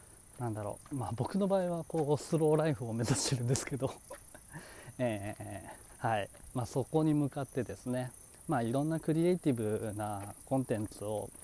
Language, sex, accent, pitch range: Japanese, male, native, 115-160 Hz